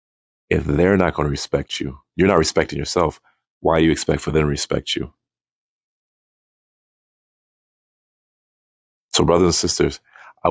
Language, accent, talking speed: English, American, 145 wpm